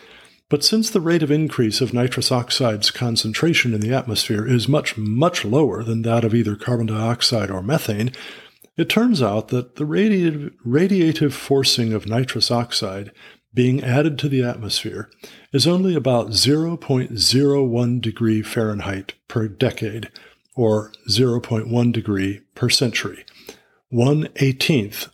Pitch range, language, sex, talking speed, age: 110-140 Hz, English, male, 130 wpm, 50-69